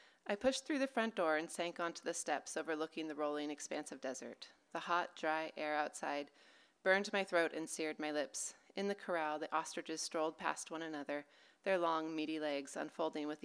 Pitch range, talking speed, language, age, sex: 150-175 Hz, 195 wpm, English, 30-49, female